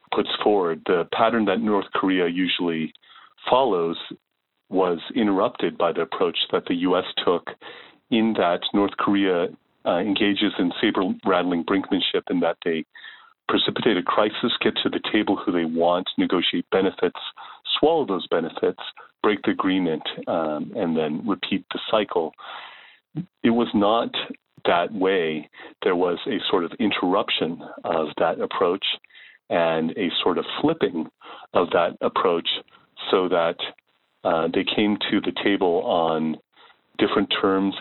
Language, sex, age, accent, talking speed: English, male, 40-59, American, 140 wpm